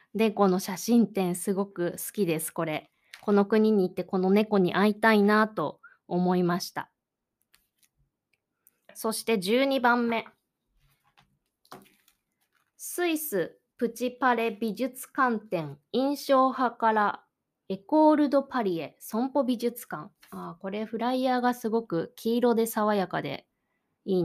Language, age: Japanese, 20-39